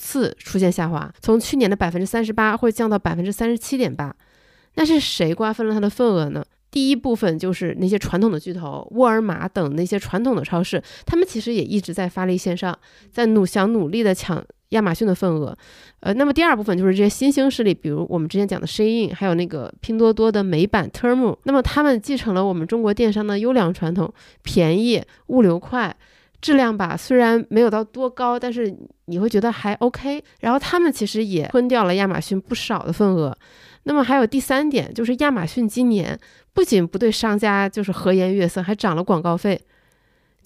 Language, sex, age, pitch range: Chinese, female, 20-39, 185-245 Hz